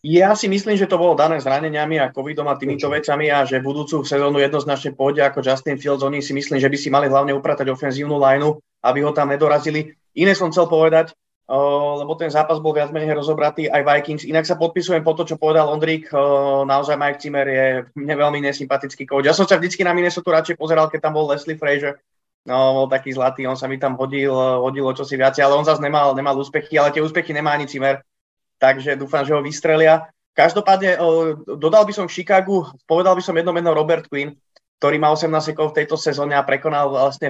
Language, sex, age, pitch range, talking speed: Czech, male, 20-39, 140-160 Hz, 210 wpm